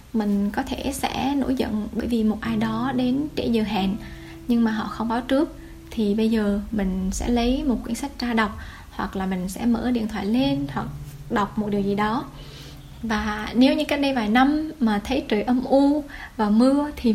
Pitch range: 200-255 Hz